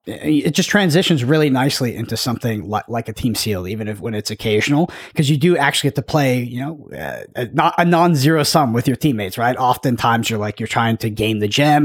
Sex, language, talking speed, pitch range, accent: male, English, 225 wpm, 115-150 Hz, American